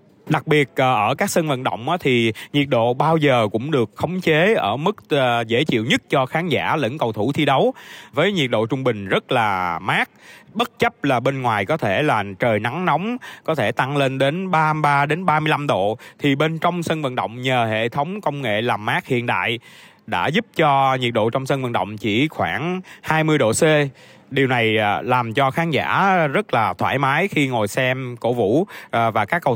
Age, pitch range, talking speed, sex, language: 20-39, 125-160 Hz, 210 wpm, male, Vietnamese